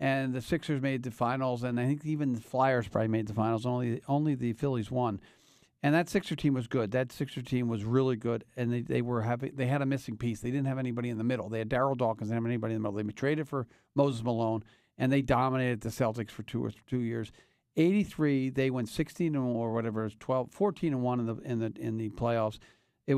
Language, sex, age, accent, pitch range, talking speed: English, male, 50-69, American, 120-150 Hz, 250 wpm